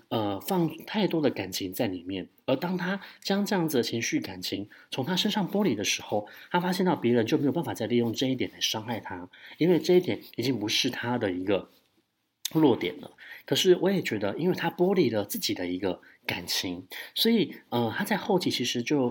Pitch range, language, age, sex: 115-170 Hz, Chinese, 30-49, male